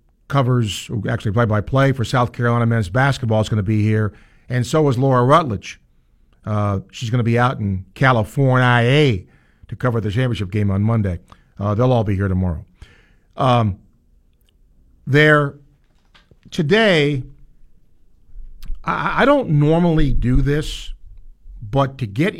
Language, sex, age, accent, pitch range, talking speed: English, male, 50-69, American, 105-140 Hz, 135 wpm